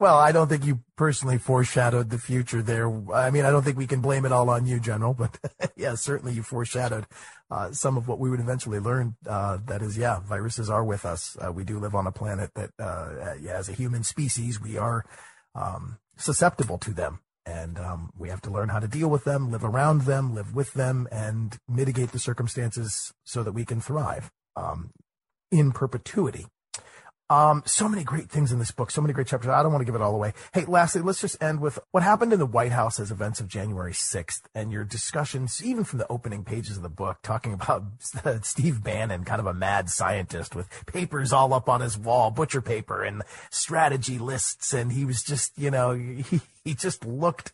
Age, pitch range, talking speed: 30-49, 110-135 Hz, 215 wpm